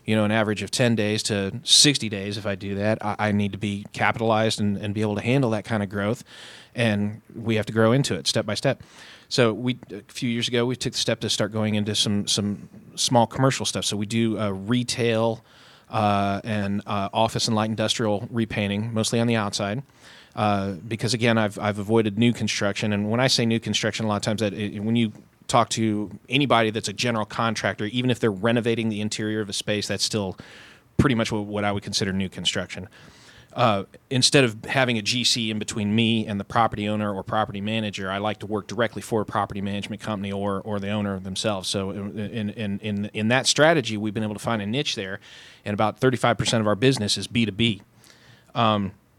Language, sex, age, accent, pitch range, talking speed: English, male, 30-49, American, 105-115 Hz, 220 wpm